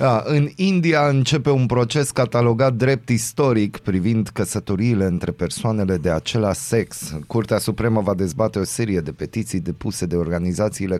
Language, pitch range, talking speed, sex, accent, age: Romanian, 95-115 Hz, 140 wpm, male, native, 30-49